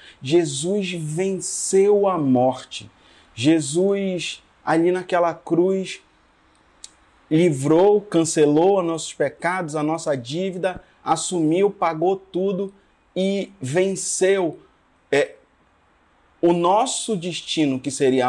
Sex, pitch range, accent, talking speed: male, 155-190 Hz, Brazilian, 90 wpm